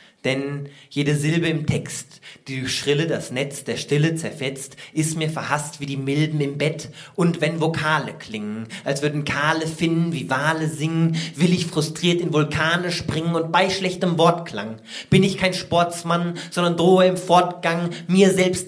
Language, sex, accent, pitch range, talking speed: German, male, German, 160-190 Hz, 165 wpm